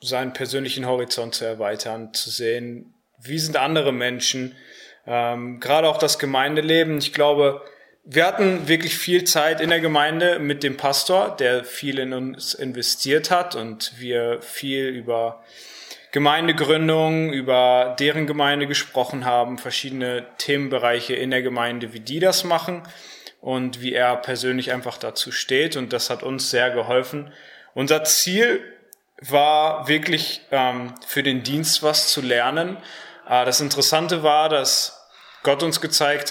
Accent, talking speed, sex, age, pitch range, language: German, 140 wpm, male, 20-39, 125-155 Hz, German